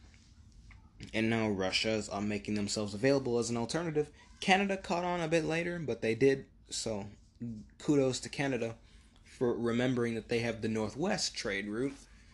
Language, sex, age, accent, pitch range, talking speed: English, male, 20-39, American, 100-125 Hz, 155 wpm